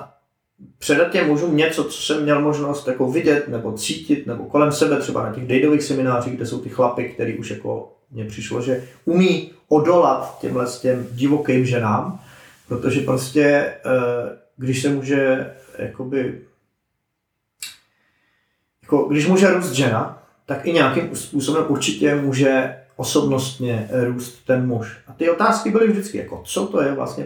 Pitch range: 125-150 Hz